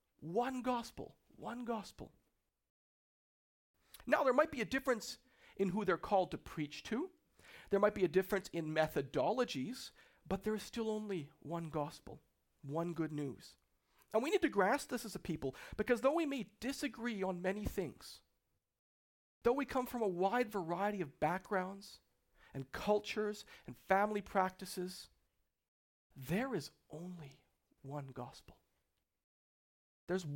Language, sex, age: English, male, 50-69